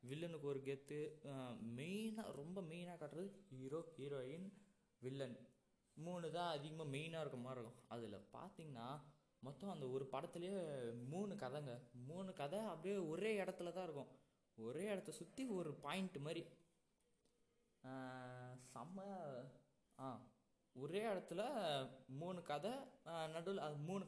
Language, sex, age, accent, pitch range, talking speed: Tamil, male, 20-39, native, 130-170 Hz, 115 wpm